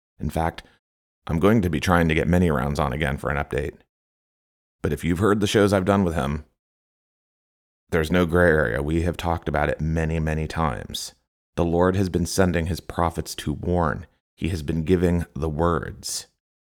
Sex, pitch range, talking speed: male, 75-95 Hz, 190 wpm